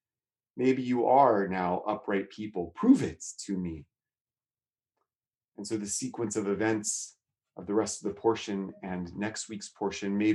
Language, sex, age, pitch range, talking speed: English, male, 30-49, 125-195 Hz, 155 wpm